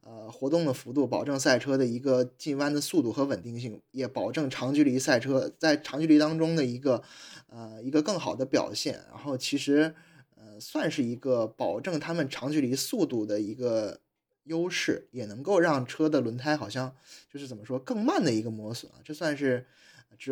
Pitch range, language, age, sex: 125-150 Hz, Chinese, 20-39, male